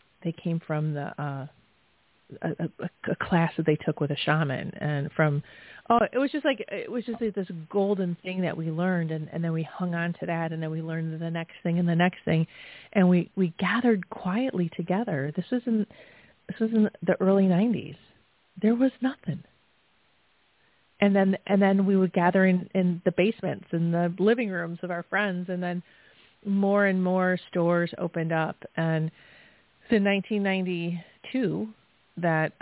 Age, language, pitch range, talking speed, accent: 30-49, English, 165-195 Hz, 180 wpm, American